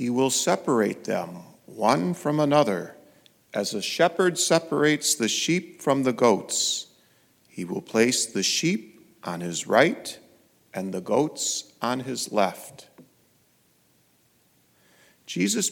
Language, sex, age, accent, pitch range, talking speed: English, male, 40-59, American, 115-160 Hz, 120 wpm